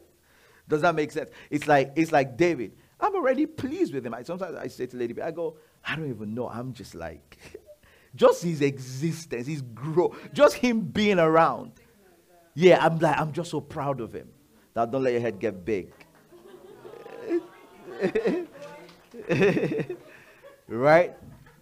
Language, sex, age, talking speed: English, male, 50-69, 155 wpm